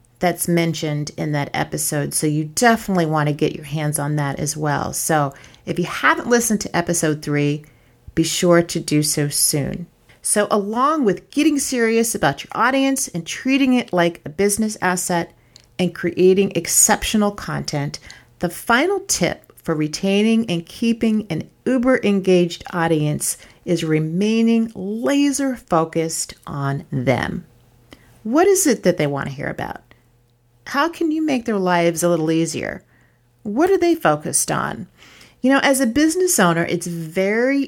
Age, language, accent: 40-59, English, American